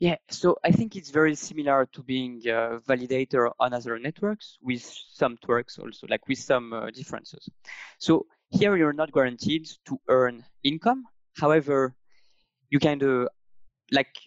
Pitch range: 125-160 Hz